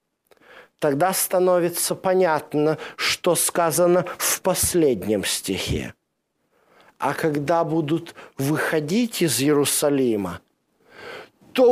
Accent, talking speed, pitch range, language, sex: native, 75 wpm, 180-240 Hz, Russian, male